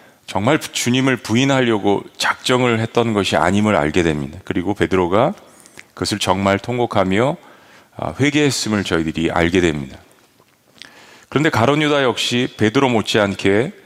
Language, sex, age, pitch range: Korean, male, 40-59, 95-125 Hz